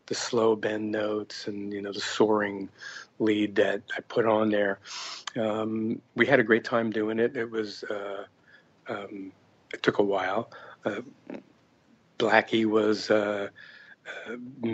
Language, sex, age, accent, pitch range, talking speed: English, male, 50-69, American, 105-115 Hz, 145 wpm